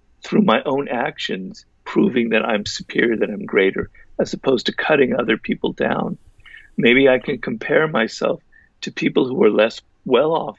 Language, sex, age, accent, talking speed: English, male, 50-69, American, 165 wpm